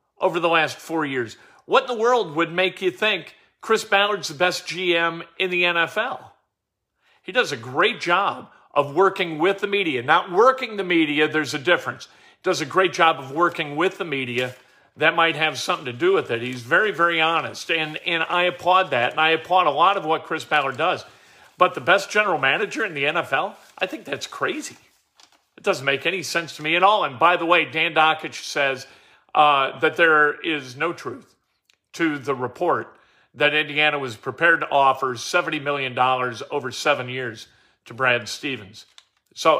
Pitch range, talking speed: 140-185 Hz, 195 wpm